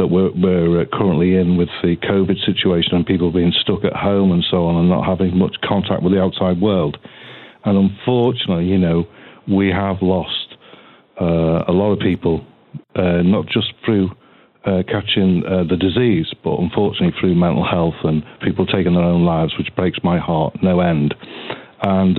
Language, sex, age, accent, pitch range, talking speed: English, male, 40-59, British, 90-100 Hz, 180 wpm